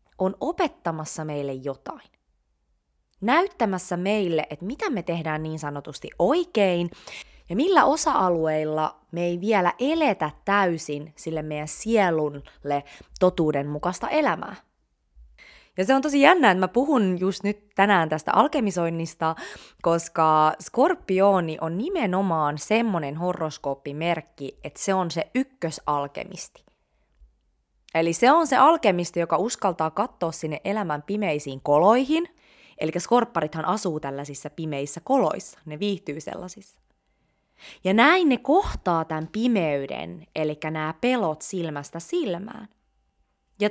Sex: female